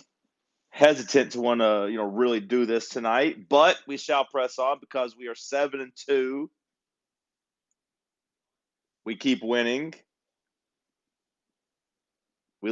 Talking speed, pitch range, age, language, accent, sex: 120 wpm, 110-135 Hz, 30-49, English, American, male